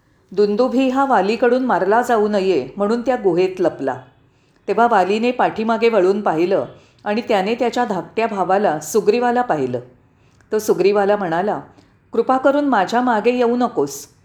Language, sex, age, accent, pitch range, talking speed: Marathi, female, 40-59, native, 180-240 Hz, 130 wpm